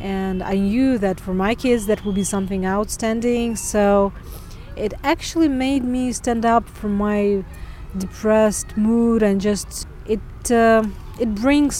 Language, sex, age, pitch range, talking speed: English, female, 30-49, 200-240 Hz, 145 wpm